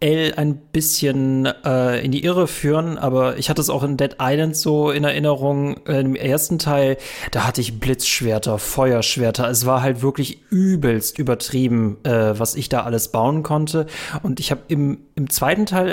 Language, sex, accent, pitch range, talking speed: German, male, German, 130-160 Hz, 175 wpm